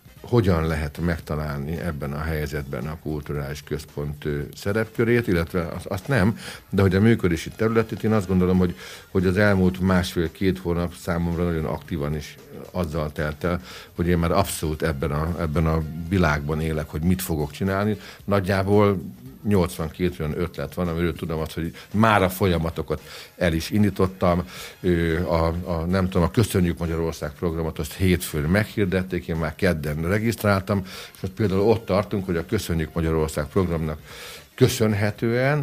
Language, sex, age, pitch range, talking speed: Hungarian, male, 60-79, 80-105 Hz, 150 wpm